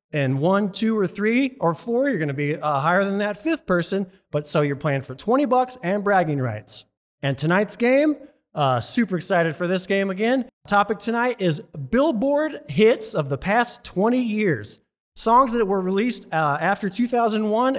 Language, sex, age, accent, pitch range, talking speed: English, male, 30-49, American, 155-225 Hz, 180 wpm